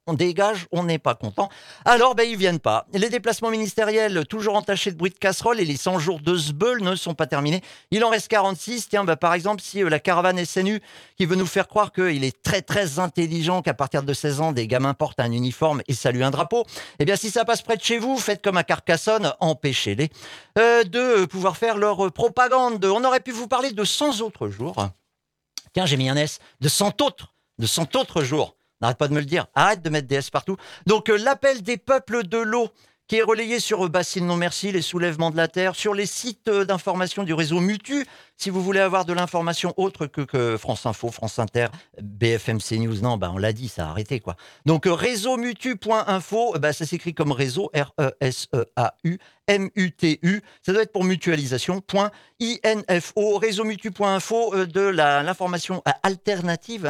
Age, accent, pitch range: 50-69, French, 155-220 Hz